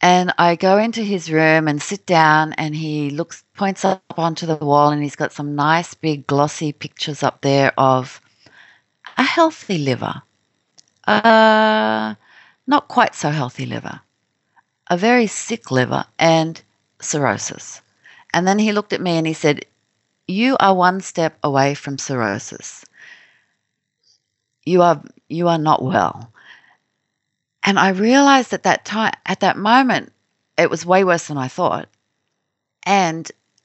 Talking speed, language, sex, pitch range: 145 wpm, English, female, 155-230 Hz